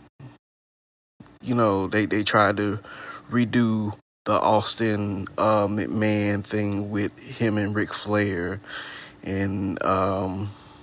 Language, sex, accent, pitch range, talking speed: English, male, American, 100-110 Hz, 105 wpm